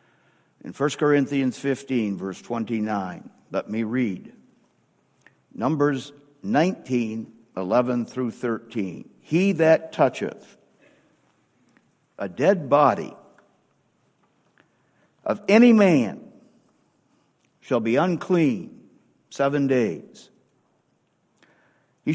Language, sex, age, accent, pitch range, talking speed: English, male, 60-79, American, 145-210 Hz, 80 wpm